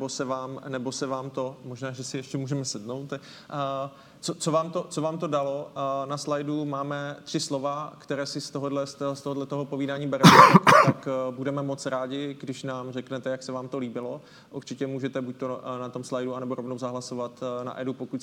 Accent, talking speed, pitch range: native, 170 wpm, 130-140 Hz